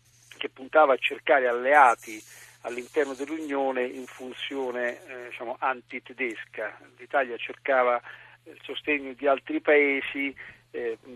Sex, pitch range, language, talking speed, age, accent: male, 120-135 Hz, Italian, 100 wpm, 50-69, native